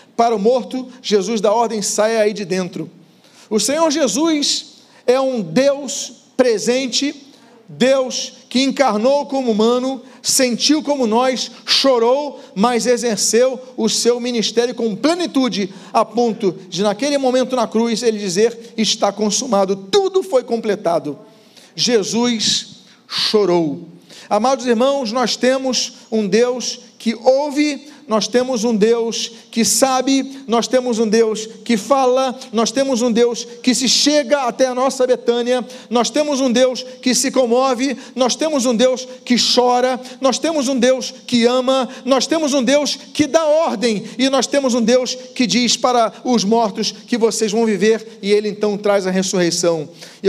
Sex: male